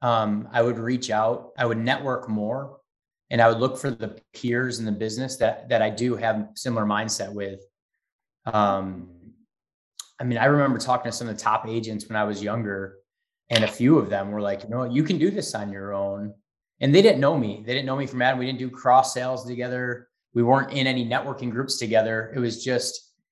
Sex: male